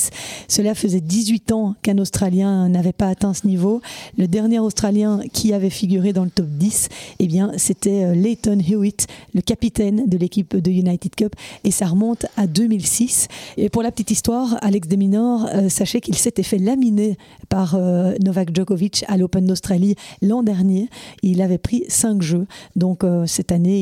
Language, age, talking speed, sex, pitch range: French, 40-59, 165 wpm, female, 185-215 Hz